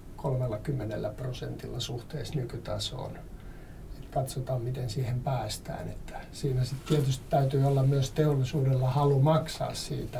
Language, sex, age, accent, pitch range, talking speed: Finnish, male, 60-79, native, 125-140 Hz, 120 wpm